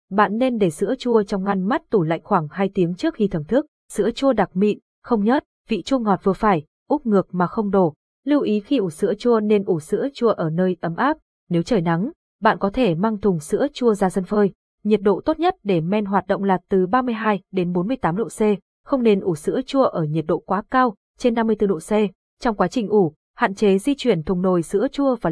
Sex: female